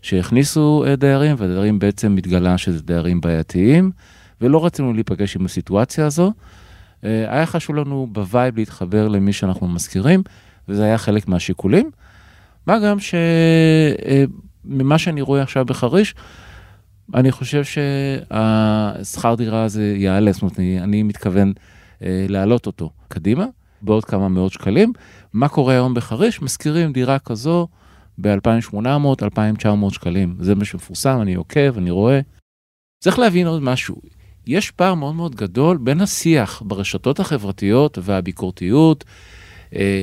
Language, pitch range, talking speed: Hebrew, 95-145 Hz, 125 wpm